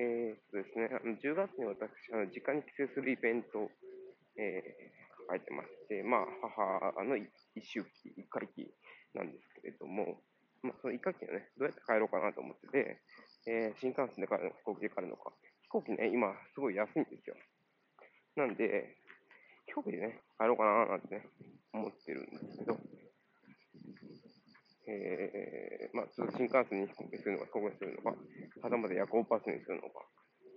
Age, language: 20-39, Japanese